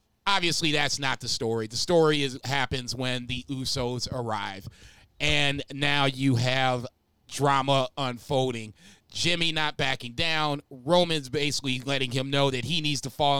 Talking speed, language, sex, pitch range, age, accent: 150 wpm, English, male, 130-160 Hz, 30-49, American